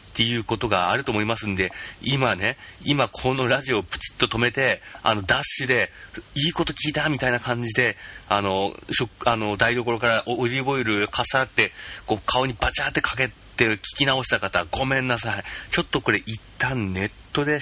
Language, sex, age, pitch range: Japanese, male, 30-49, 95-120 Hz